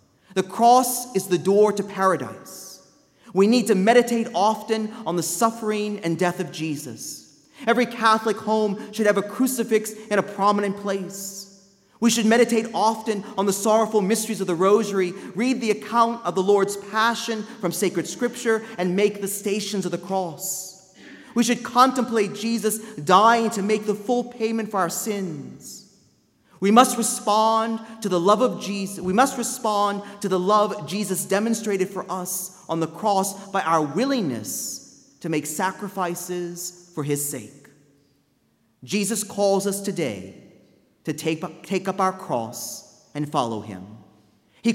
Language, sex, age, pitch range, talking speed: English, male, 30-49, 180-220 Hz, 155 wpm